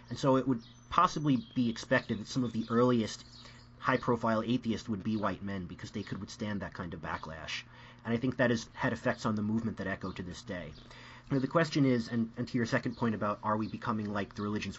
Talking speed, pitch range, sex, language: 230 wpm, 110-125 Hz, male, English